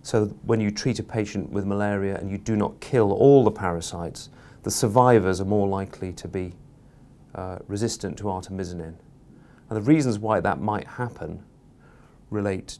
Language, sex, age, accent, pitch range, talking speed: English, male, 30-49, British, 95-110 Hz, 165 wpm